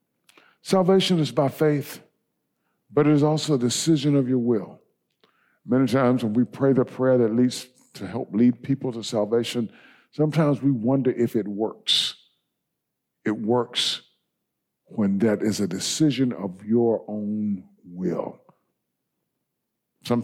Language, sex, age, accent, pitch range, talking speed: English, male, 50-69, American, 115-145 Hz, 135 wpm